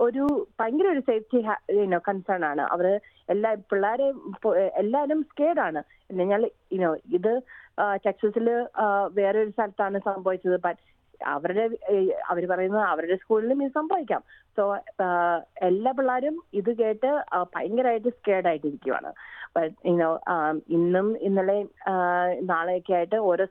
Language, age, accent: Malayalam, 20-39, native